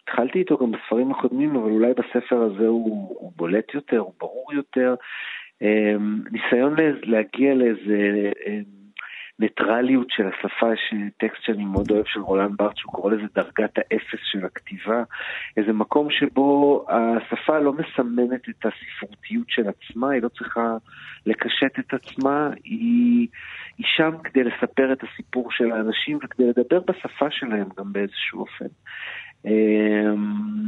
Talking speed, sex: 135 wpm, male